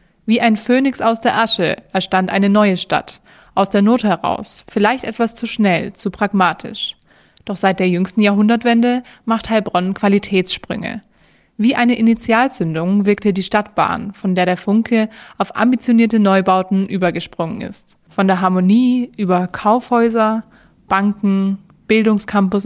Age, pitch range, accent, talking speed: 20-39, 185-225 Hz, German, 130 wpm